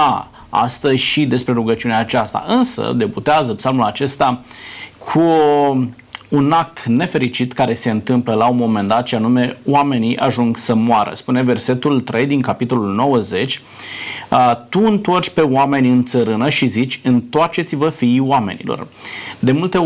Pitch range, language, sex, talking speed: 120-145 Hz, Romanian, male, 135 wpm